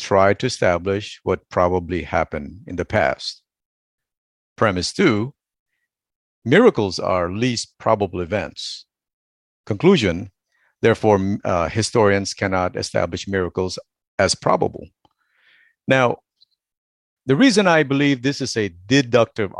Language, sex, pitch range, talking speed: English, male, 90-125 Hz, 105 wpm